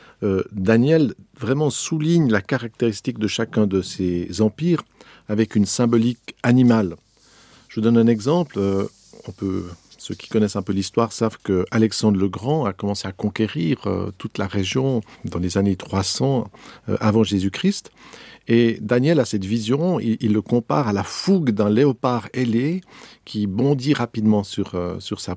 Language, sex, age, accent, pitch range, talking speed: French, male, 50-69, French, 100-125 Hz, 155 wpm